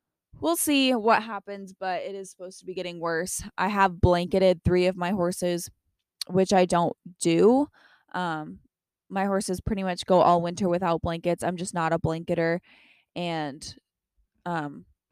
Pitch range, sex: 175-215 Hz, female